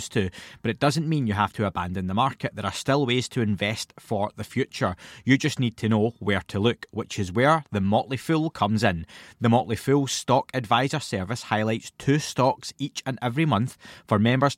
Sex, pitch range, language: male, 105-135 Hz, English